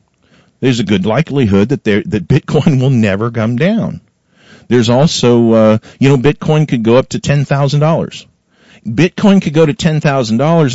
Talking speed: 155 wpm